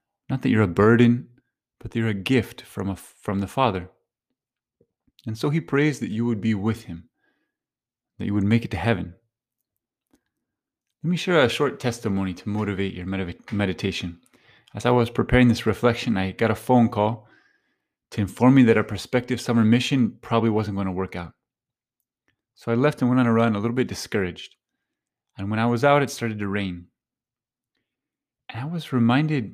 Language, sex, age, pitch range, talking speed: English, male, 30-49, 100-125 Hz, 185 wpm